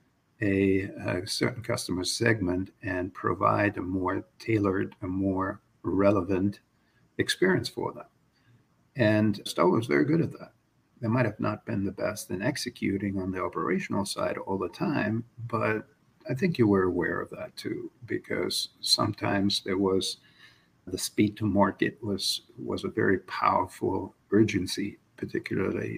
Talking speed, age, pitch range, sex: 145 wpm, 50-69, 100-125 Hz, male